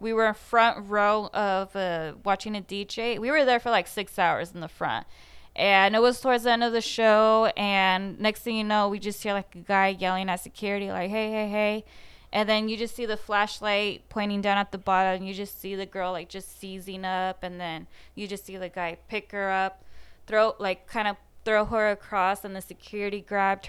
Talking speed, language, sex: 225 wpm, English, female